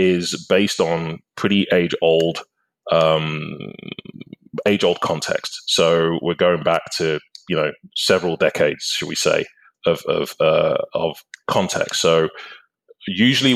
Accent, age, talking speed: British, 30-49, 130 wpm